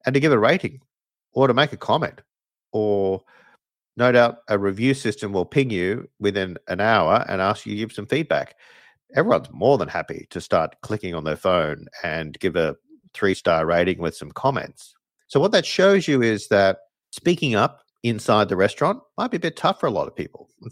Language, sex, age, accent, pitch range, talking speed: English, male, 50-69, Australian, 95-145 Hz, 205 wpm